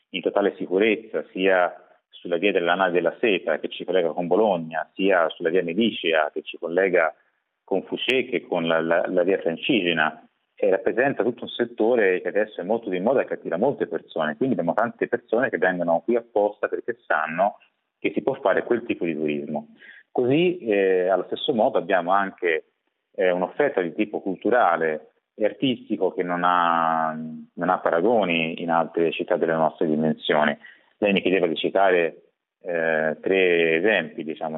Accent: native